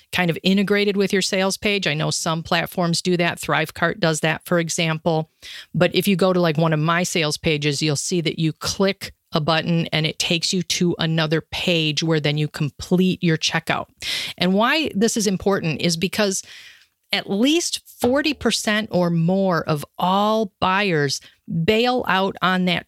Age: 40-59